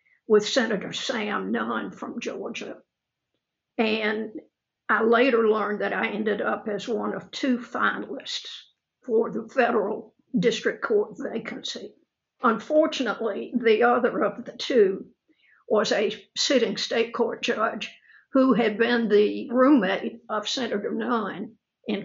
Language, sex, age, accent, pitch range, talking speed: English, female, 60-79, American, 215-245 Hz, 125 wpm